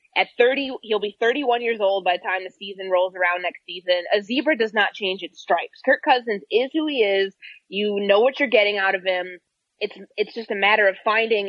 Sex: female